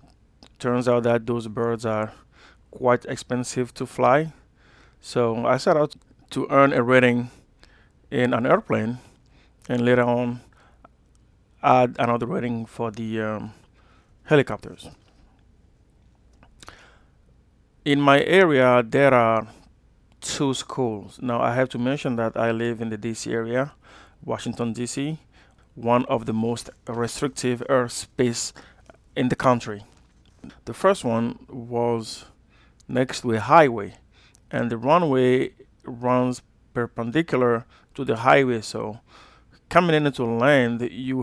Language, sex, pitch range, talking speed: English, male, 115-130 Hz, 120 wpm